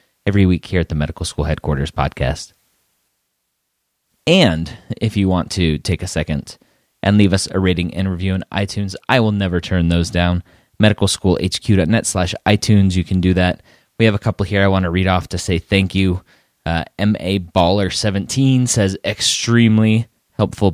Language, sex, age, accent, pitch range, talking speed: English, male, 30-49, American, 85-105 Hz, 175 wpm